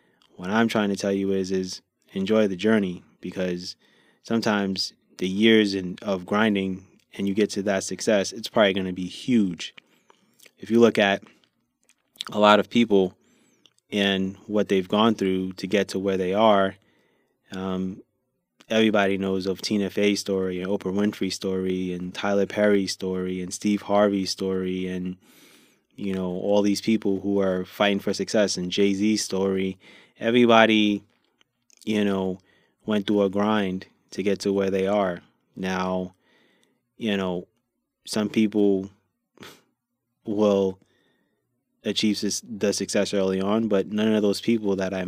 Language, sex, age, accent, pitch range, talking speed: English, male, 20-39, American, 95-105 Hz, 150 wpm